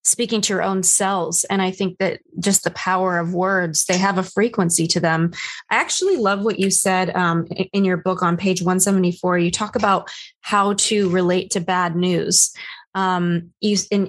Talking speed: 190 wpm